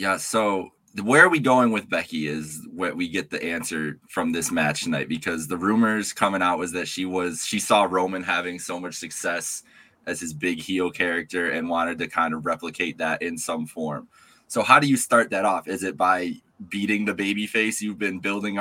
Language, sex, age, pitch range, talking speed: English, male, 20-39, 90-110 Hz, 215 wpm